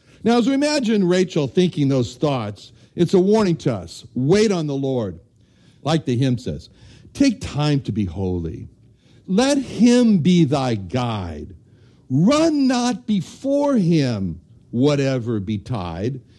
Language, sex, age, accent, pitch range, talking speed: English, male, 60-79, American, 115-165 Hz, 135 wpm